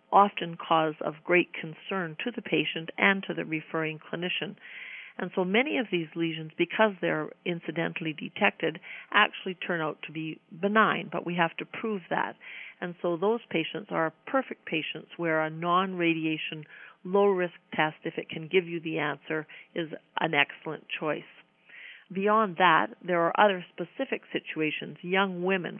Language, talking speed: English, 155 wpm